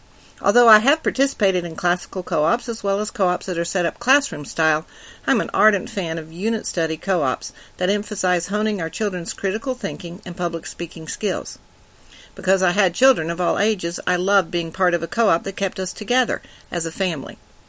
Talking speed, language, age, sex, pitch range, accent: 195 wpm, English, 60-79, female, 170-215 Hz, American